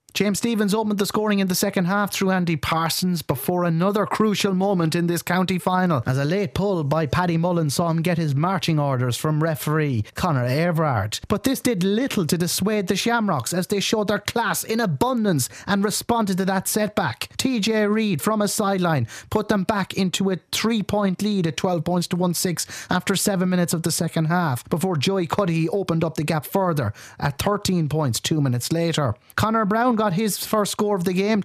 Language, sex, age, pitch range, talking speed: English, male, 30-49, 165-200 Hz, 200 wpm